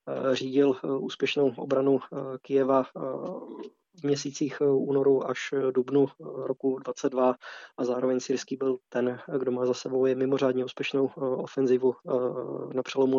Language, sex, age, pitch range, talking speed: Slovak, male, 20-39, 130-140 Hz, 120 wpm